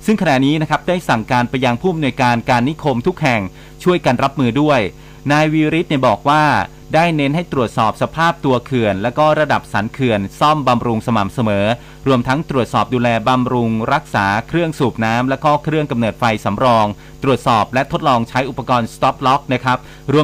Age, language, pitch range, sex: 30-49, Thai, 115-150 Hz, male